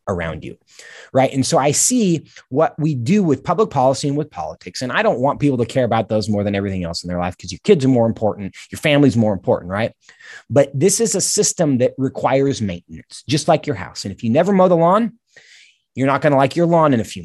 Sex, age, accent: male, 30-49, American